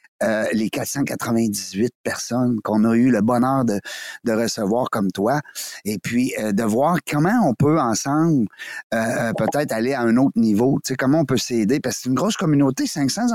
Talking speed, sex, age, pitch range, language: 195 wpm, male, 30-49, 120-165 Hz, French